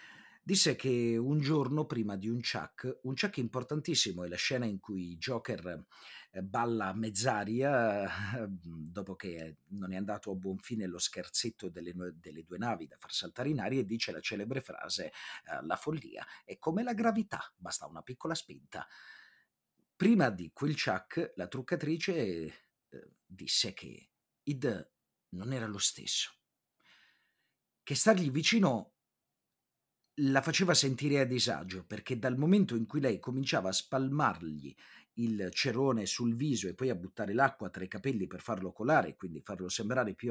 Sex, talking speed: male, 155 wpm